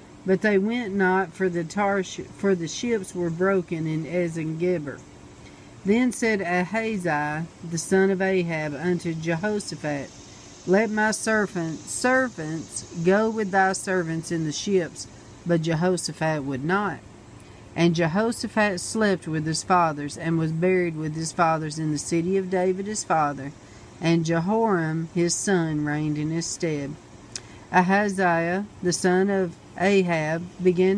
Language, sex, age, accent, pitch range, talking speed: English, female, 50-69, American, 160-195 Hz, 140 wpm